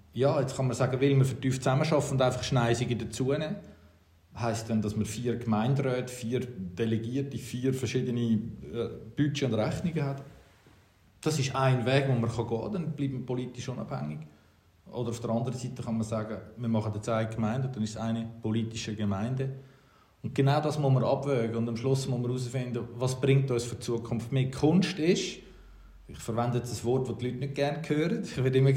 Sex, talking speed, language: male, 200 wpm, German